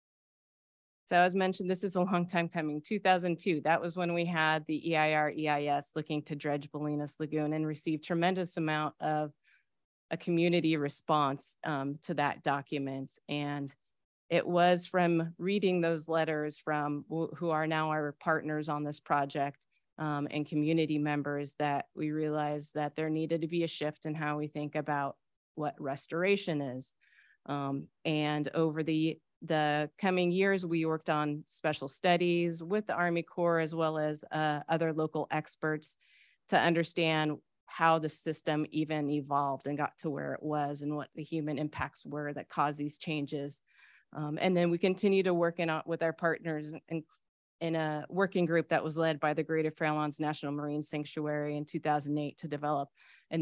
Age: 30-49